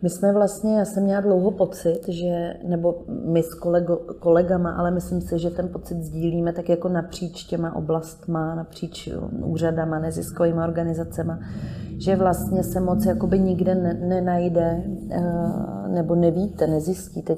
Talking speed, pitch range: 140 wpm, 170-185 Hz